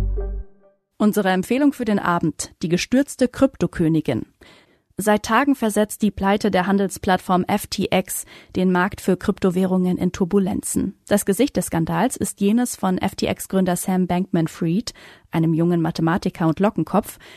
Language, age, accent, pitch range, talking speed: German, 30-49, German, 175-210 Hz, 130 wpm